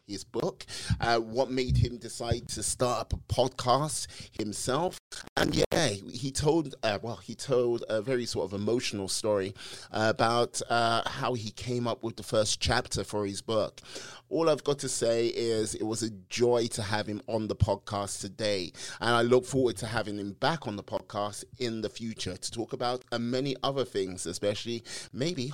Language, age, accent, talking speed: English, 30-49, British, 190 wpm